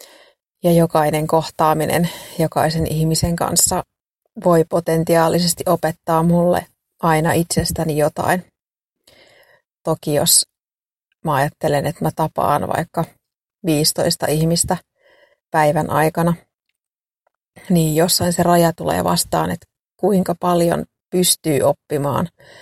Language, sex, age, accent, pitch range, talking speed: Finnish, female, 30-49, native, 155-175 Hz, 95 wpm